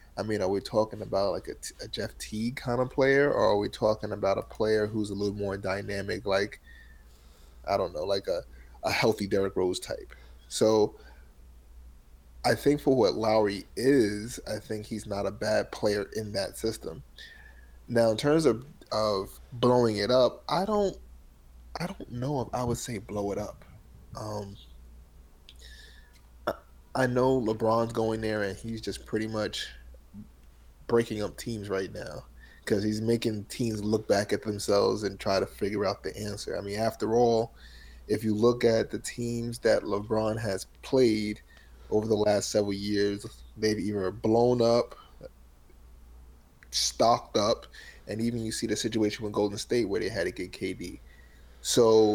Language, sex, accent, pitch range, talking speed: English, male, American, 90-115 Hz, 170 wpm